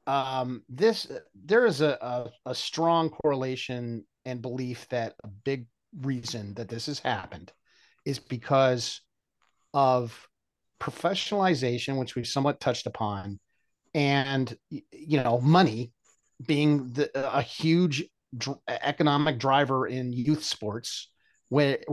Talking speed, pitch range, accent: 120 wpm, 120-150 Hz, American